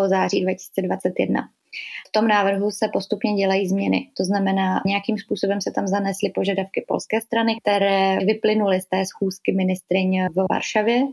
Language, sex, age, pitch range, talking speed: Czech, female, 20-39, 190-210 Hz, 145 wpm